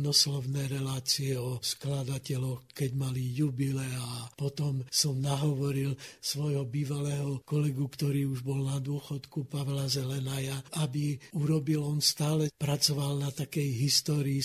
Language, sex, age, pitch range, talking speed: Slovak, male, 60-79, 135-150 Hz, 120 wpm